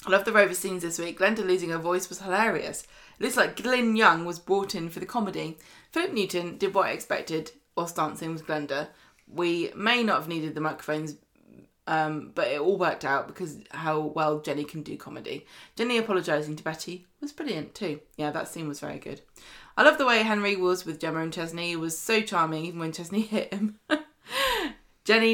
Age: 20-39